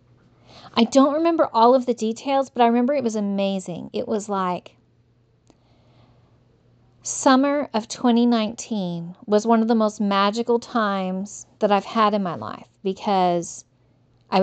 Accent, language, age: American, English, 40-59